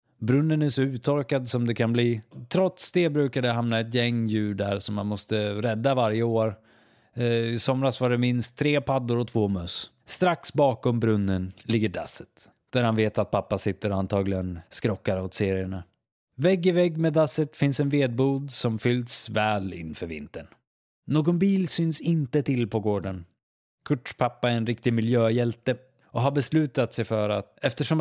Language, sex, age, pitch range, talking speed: Swedish, male, 20-39, 105-140 Hz, 175 wpm